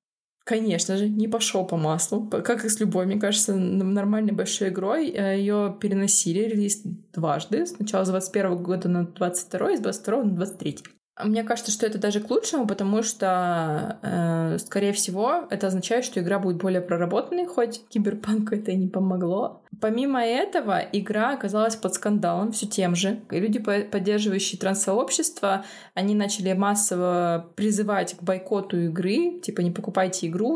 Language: Russian